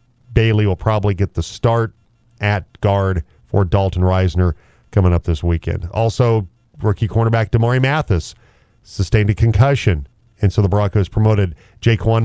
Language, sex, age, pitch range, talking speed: English, male, 40-59, 95-115 Hz, 140 wpm